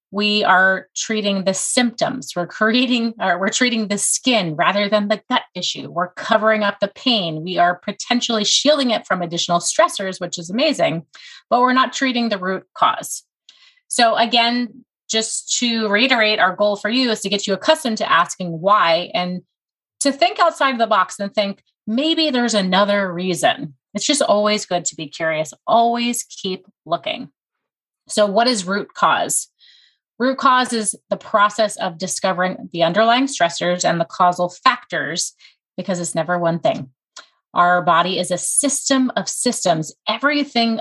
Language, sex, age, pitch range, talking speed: English, female, 30-49, 185-240 Hz, 165 wpm